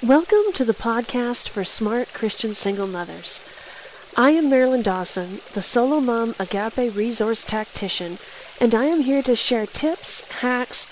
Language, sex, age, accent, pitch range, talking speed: English, female, 40-59, American, 210-250 Hz, 150 wpm